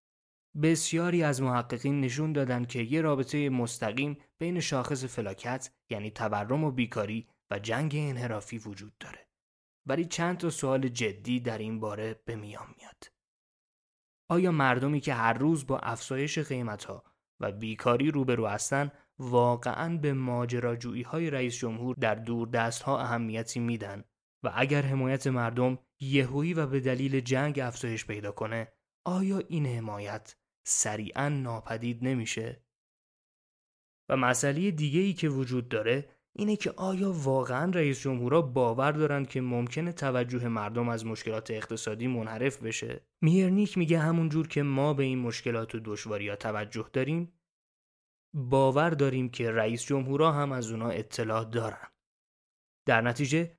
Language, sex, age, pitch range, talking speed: English, male, 20-39, 115-150 Hz, 140 wpm